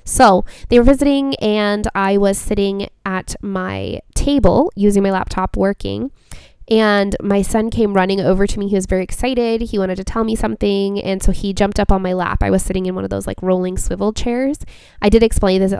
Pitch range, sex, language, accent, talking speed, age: 180-215 Hz, female, English, American, 215 wpm, 20-39